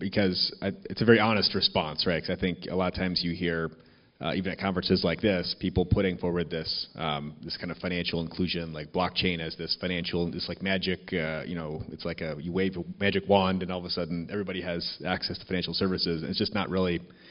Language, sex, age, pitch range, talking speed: English, male, 30-49, 90-105 Hz, 235 wpm